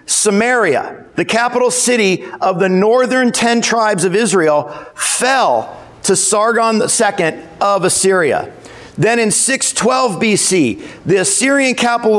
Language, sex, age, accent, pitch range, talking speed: English, male, 50-69, American, 190-235 Hz, 120 wpm